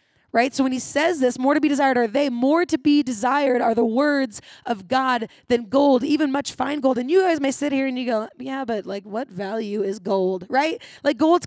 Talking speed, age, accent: 240 wpm, 20-39, American